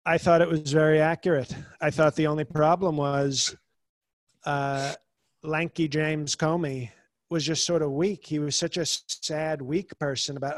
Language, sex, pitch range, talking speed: English, male, 150-185 Hz, 165 wpm